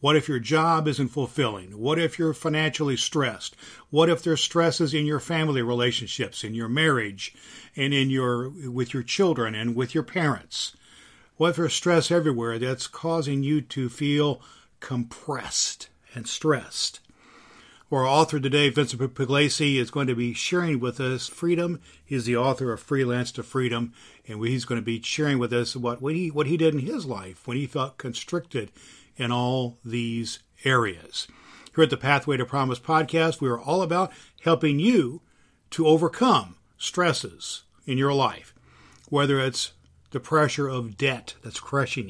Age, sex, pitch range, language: 50-69, male, 115-145 Hz, English